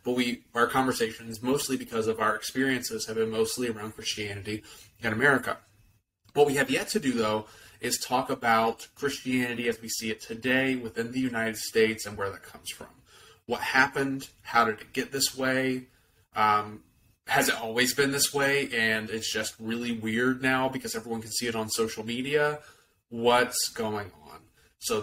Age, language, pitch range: 30-49, English, 110-130 Hz